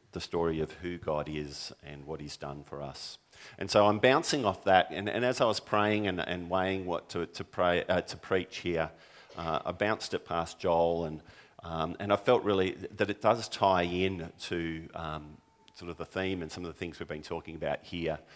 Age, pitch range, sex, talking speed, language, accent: 40-59, 75-95 Hz, male, 220 wpm, English, Australian